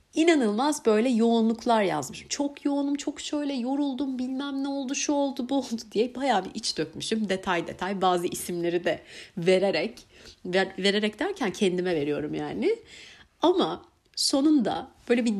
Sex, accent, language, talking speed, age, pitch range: female, native, Turkish, 145 wpm, 30-49, 190-270 Hz